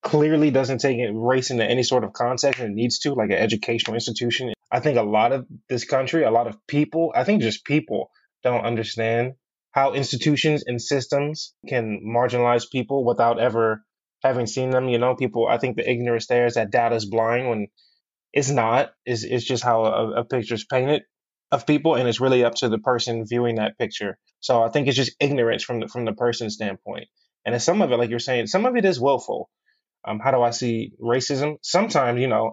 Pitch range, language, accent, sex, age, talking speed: 115-145 Hz, English, American, male, 20-39, 215 wpm